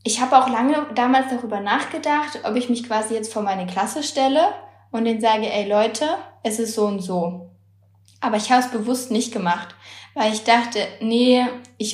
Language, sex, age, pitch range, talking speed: German, female, 20-39, 190-245 Hz, 190 wpm